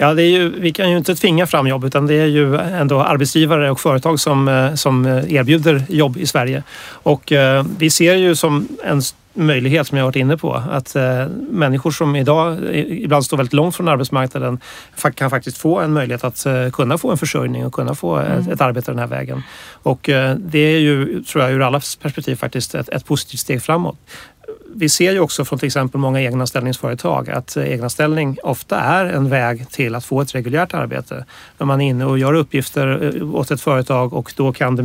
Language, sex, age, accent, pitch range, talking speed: Swedish, male, 30-49, native, 130-155 Hz, 195 wpm